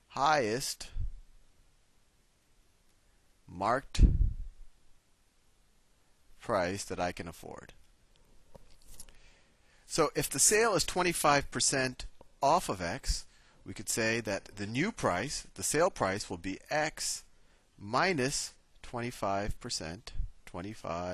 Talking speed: 90 wpm